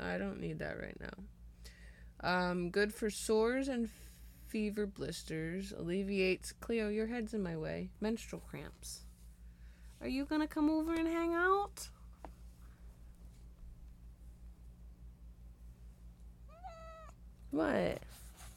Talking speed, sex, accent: 105 wpm, female, American